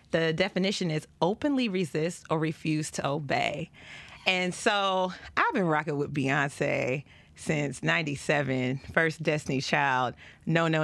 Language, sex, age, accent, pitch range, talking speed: English, female, 30-49, American, 150-190 Hz, 125 wpm